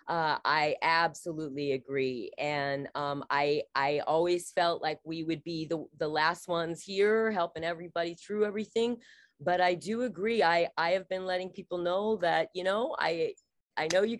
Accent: American